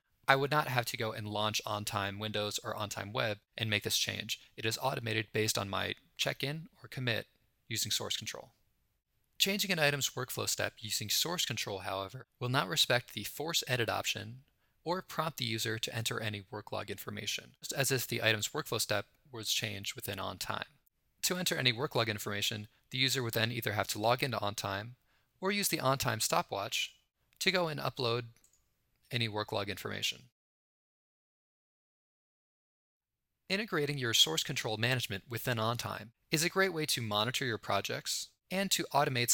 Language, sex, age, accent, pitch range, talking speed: English, male, 20-39, American, 105-140 Hz, 170 wpm